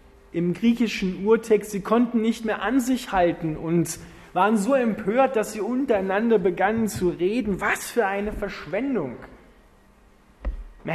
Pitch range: 165-220 Hz